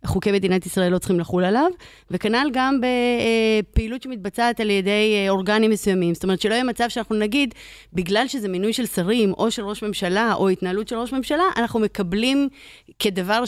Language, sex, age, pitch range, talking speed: Hebrew, female, 30-49, 190-235 Hz, 175 wpm